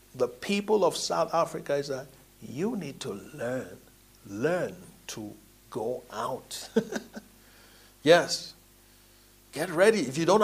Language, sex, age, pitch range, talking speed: English, male, 60-79, 135-210 Hz, 120 wpm